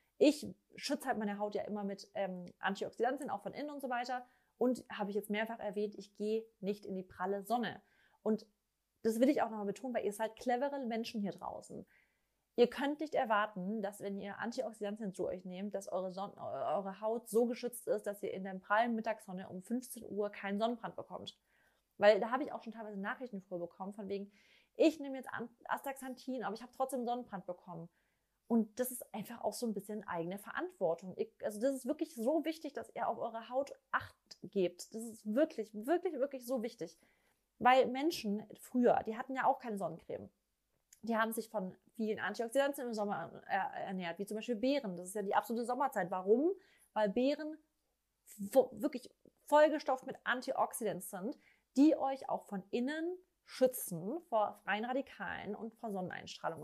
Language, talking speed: German, 185 wpm